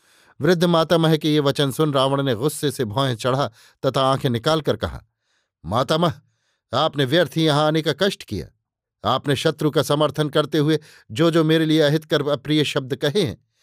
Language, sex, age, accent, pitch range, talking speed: Hindi, male, 50-69, native, 140-160 Hz, 145 wpm